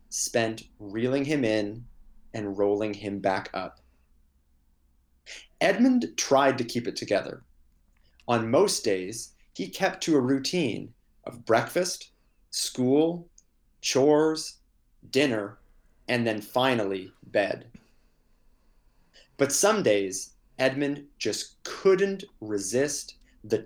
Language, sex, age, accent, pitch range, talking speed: English, male, 30-49, American, 105-140 Hz, 100 wpm